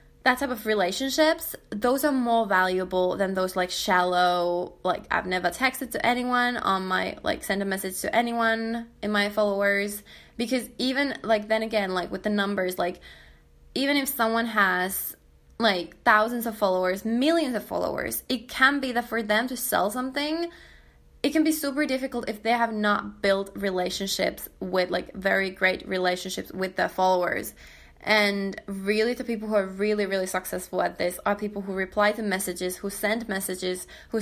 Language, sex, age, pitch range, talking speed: English, female, 20-39, 185-235 Hz, 175 wpm